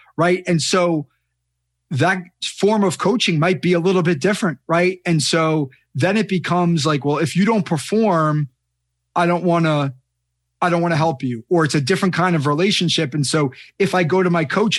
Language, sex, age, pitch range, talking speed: English, male, 30-49, 150-180 Hz, 205 wpm